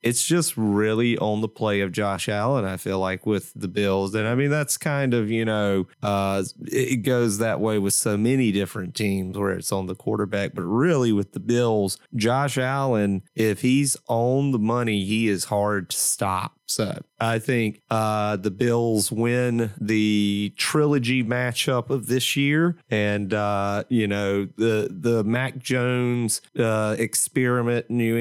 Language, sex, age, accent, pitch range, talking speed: English, male, 30-49, American, 105-125 Hz, 170 wpm